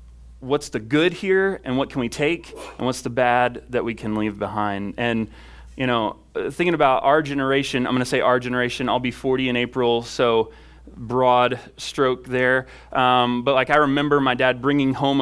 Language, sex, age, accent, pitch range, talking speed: English, male, 30-49, American, 115-135 Hz, 195 wpm